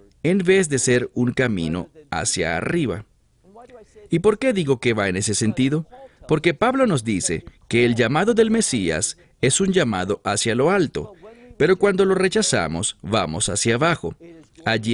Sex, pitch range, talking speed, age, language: male, 110-180 Hz, 160 wpm, 40-59, English